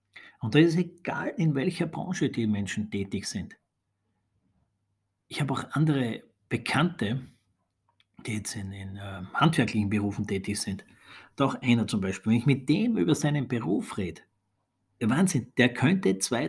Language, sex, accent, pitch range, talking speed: German, male, Austrian, 105-140 Hz, 160 wpm